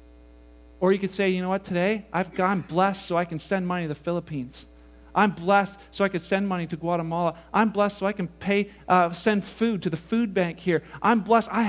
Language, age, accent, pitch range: English, 40-59, American, 180-230 Hz